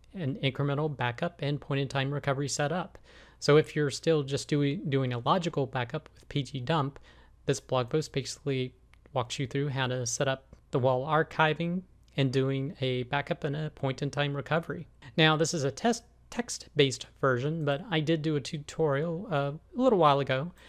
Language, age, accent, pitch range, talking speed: English, 30-49, American, 130-155 Hz, 175 wpm